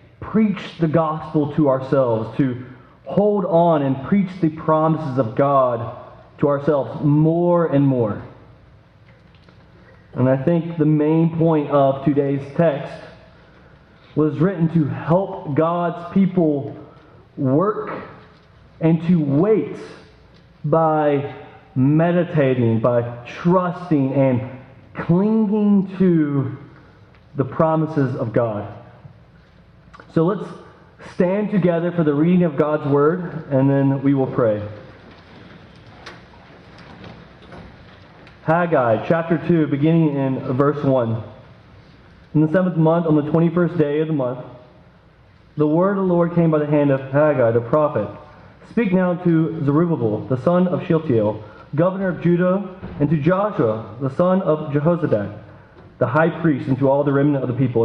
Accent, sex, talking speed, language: American, male, 130 wpm, English